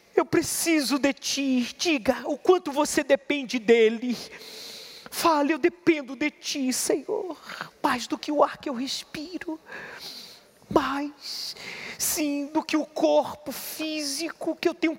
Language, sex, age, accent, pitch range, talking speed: Portuguese, male, 40-59, Brazilian, 260-310 Hz, 135 wpm